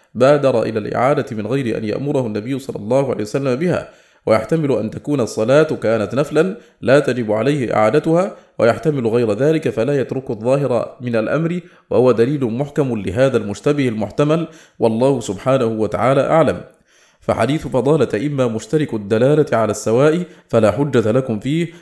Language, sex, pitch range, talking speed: English, male, 110-145 Hz, 145 wpm